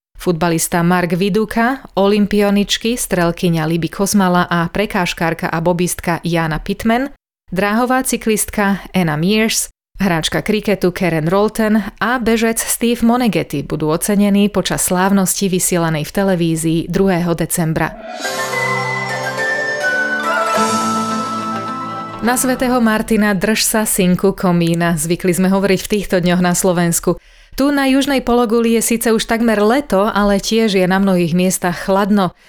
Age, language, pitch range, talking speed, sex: 30-49, Slovak, 180-220 Hz, 120 wpm, female